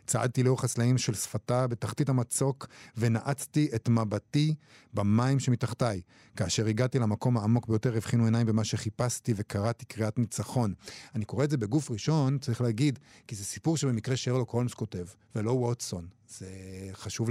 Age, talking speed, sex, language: 50-69, 150 wpm, male, Hebrew